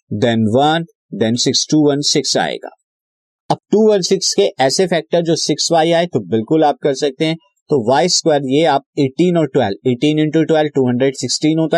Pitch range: 125-160 Hz